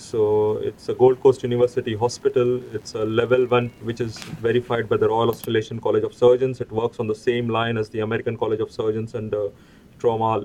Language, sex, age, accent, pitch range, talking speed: English, male, 30-49, Indian, 110-125 Hz, 205 wpm